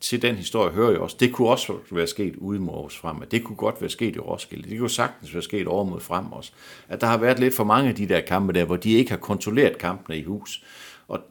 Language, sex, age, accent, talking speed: Danish, male, 60-79, native, 265 wpm